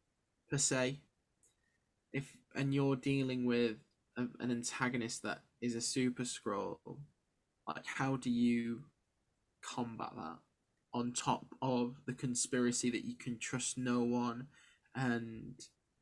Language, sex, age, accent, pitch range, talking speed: English, male, 10-29, British, 120-135 Hz, 125 wpm